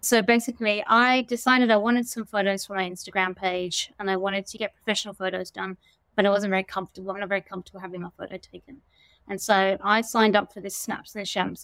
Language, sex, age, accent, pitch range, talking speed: English, female, 20-39, British, 195-230 Hz, 220 wpm